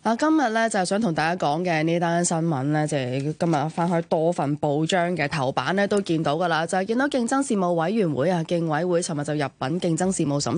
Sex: female